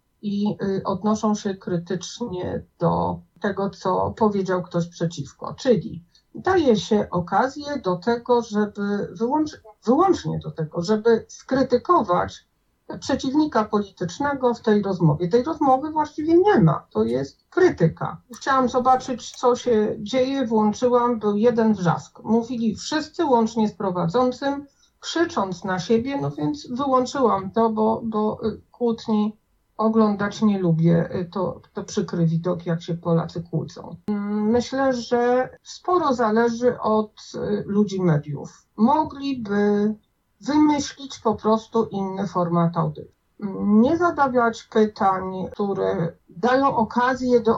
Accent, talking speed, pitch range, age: native, 115 wpm, 190-245 Hz, 50-69